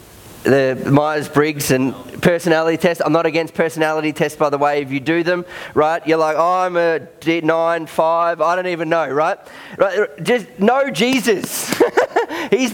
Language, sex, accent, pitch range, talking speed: English, male, Australian, 125-175 Hz, 160 wpm